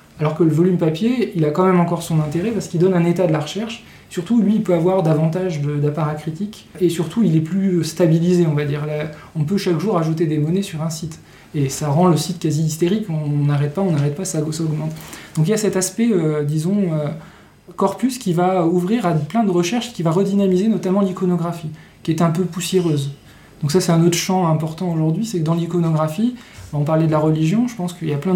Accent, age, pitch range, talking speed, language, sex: French, 20-39, 155-185 Hz, 240 wpm, English, male